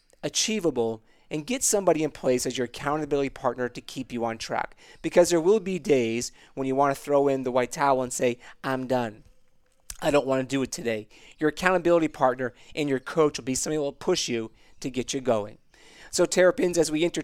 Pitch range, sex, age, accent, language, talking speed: 125-155 Hz, male, 30-49, American, English, 215 wpm